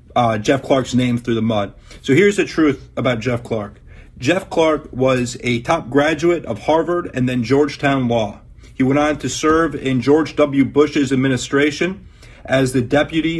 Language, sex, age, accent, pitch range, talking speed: English, male, 40-59, American, 125-145 Hz, 175 wpm